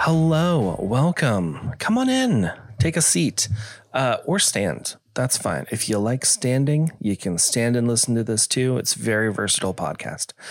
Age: 30-49